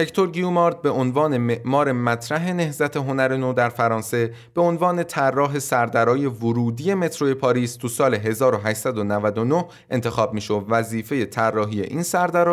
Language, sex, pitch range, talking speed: Persian, male, 115-155 Hz, 135 wpm